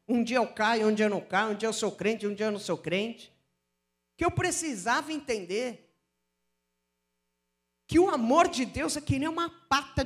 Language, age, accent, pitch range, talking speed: Portuguese, 50-69, Brazilian, 175-240 Hz, 205 wpm